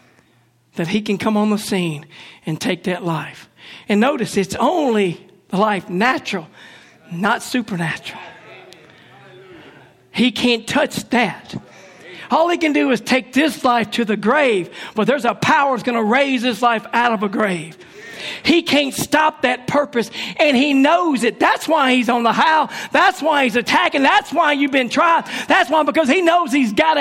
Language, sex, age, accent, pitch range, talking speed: English, male, 40-59, American, 220-295 Hz, 180 wpm